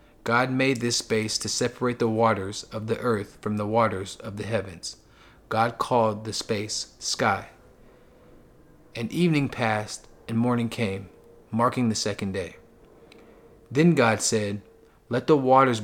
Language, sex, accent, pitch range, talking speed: English, male, American, 105-125 Hz, 145 wpm